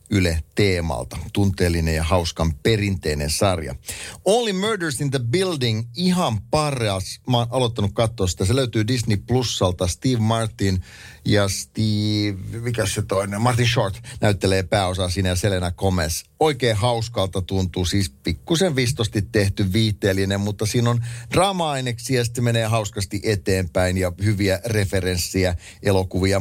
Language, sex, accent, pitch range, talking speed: Finnish, male, native, 90-115 Hz, 130 wpm